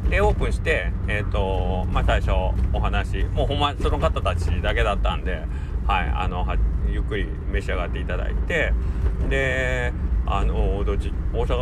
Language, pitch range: Japanese, 80-90 Hz